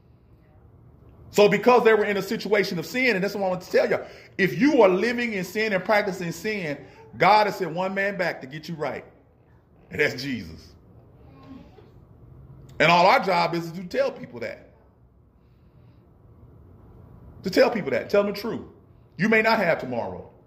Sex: male